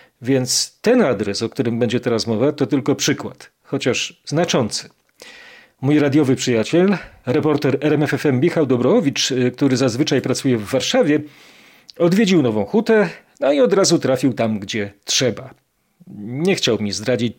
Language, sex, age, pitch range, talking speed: Polish, male, 40-59, 125-170 Hz, 140 wpm